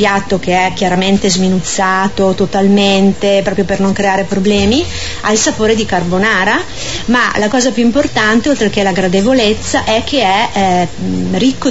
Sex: female